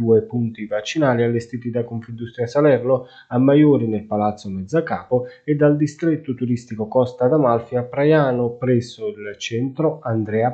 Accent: native